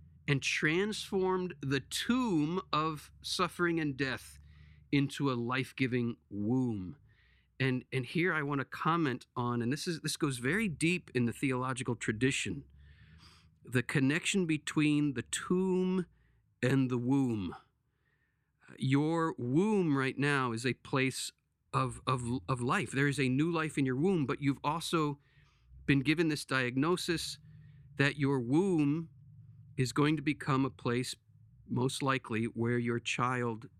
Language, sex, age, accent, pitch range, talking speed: English, male, 50-69, American, 115-145 Hz, 140 wpm